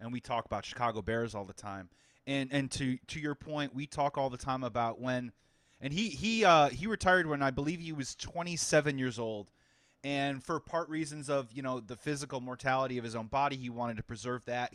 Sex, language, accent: male, English, American